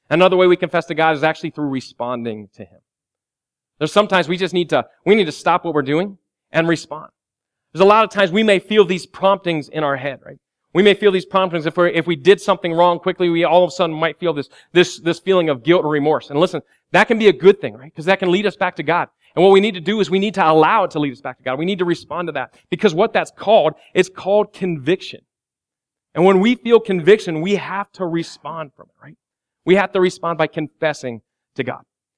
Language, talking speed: English, 255 wpm